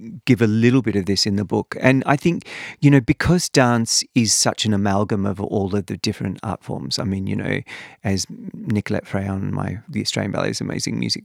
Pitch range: 100-120 Hz